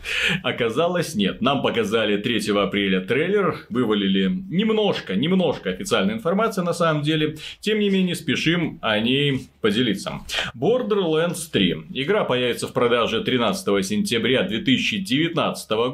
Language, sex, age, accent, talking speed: Russian, male, 30-49, native, 115 wpm